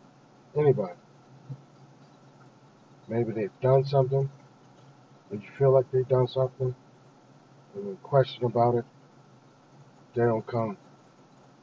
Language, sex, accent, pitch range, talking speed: English, male, American, 115-135 Hz, 110 wpm